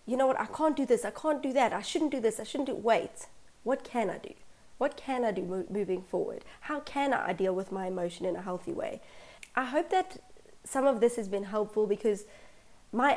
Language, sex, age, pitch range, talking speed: English, female, 20-39, 200-245 Hz, 235 wpm